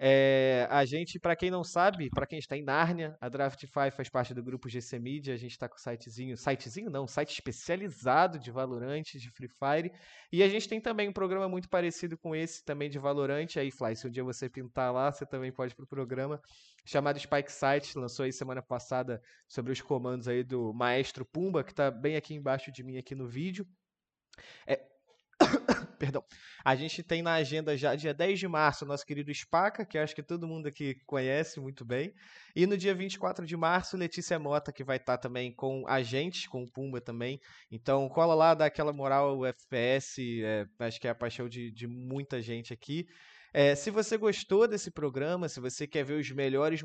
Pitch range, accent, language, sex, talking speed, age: 130-165 Hz, Brazilian, Portuguese, male, 210 wpm, 20-39